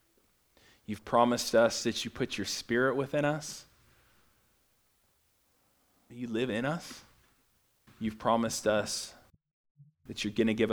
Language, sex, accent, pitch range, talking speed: English, male, American, 105-125 Hz, 125 wpm